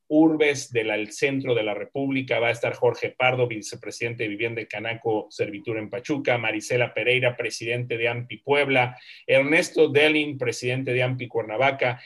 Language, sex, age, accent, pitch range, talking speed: Spanish, male, 40-59, Mexican, 120-150 Hz, 150 wpm